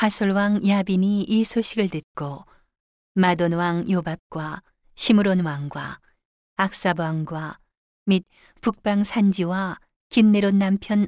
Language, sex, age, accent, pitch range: Korean, female, 40-59, native, 160-200 Hz